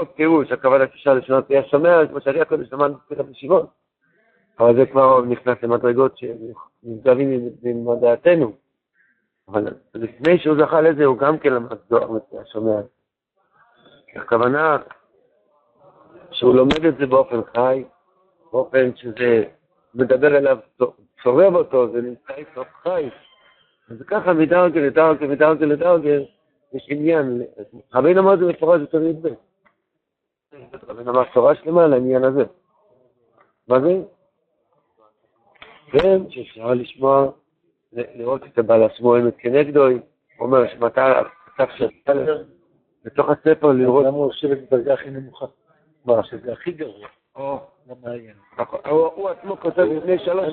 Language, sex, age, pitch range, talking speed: Hebrew, male, 60-79, 125-160 Hz, 105 wpm